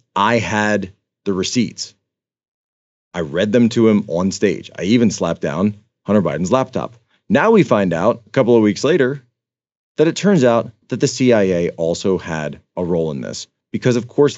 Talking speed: 180 wpm